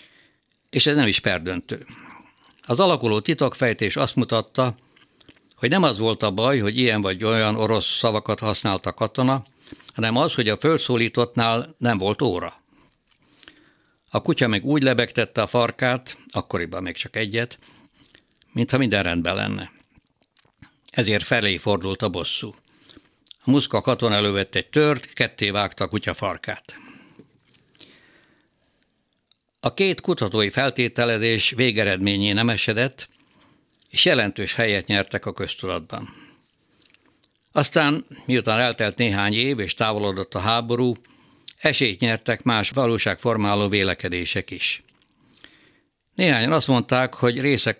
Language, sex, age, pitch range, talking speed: Hungarian, male, 60-79, 100-125 Hz, 120 wpm